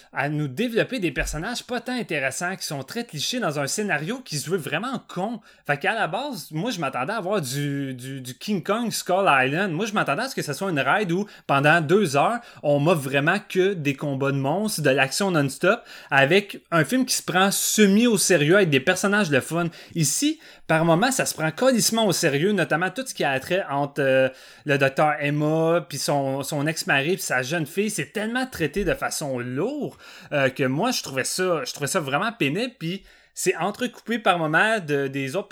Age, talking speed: 30-49, 215 wpm